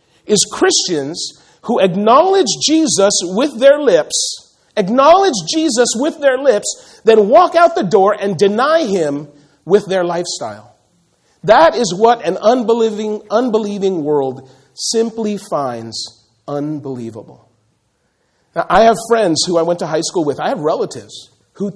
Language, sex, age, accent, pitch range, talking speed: English, male, 40-59, American, 165-230 Hz, 135 wpm